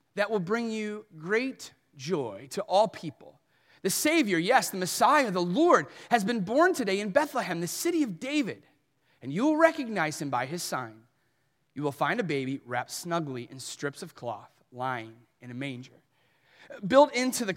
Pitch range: 160-245 Hz